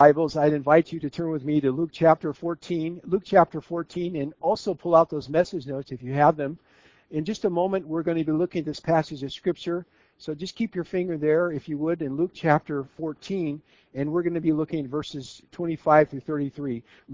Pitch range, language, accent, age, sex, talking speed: 130-165 Hz, English, American, 50-69, male, 225 wpm